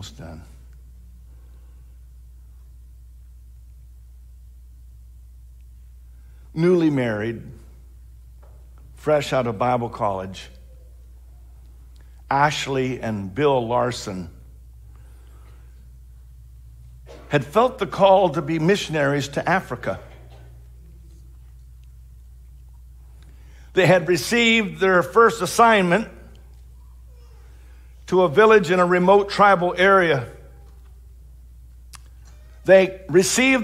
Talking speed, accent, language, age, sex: 65 wpm, American, English, 50-69, male